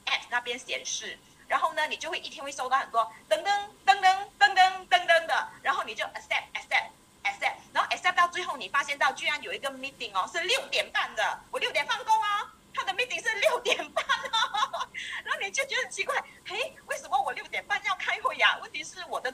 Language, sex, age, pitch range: Chinese, female, 30-49, 260-375 Hz